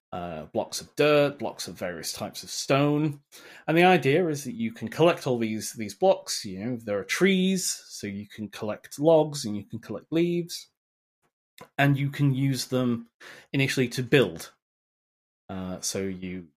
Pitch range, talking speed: 105-145 Hz, 175 wpm